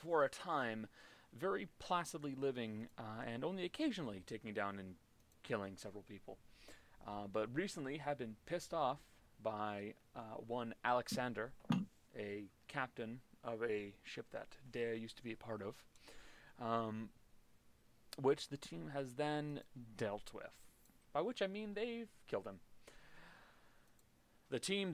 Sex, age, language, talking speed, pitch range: male, 30-49, English, 140 wpm, 115-155 Hz